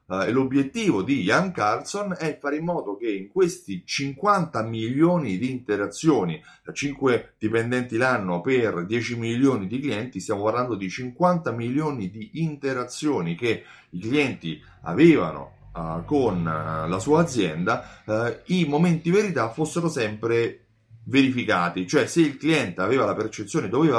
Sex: male